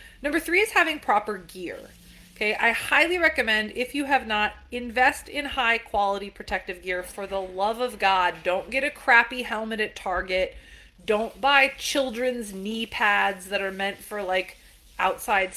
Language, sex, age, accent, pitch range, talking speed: English, female, 30-49, American, 195-250 Hz, 165 wpm